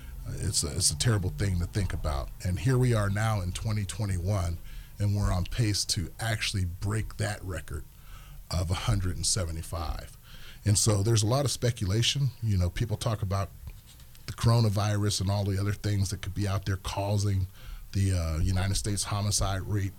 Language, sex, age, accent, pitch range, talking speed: English, male, 30-49, American, 90-110 Hz, 175 wpm